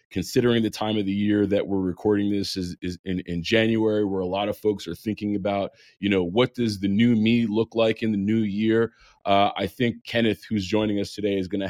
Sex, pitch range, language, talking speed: male, 100-120 Hz, English, 240 wpm